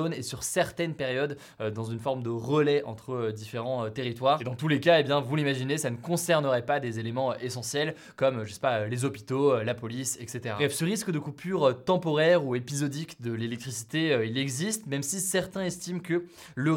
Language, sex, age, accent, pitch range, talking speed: French, male, 20-39, French, 130-170 Hz, 225 wpm